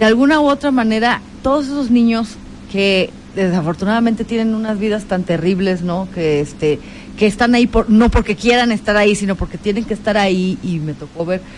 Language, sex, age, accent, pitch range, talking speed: Spanish, female, 40-59, Mexican, 185-235 Hz, 190 wpm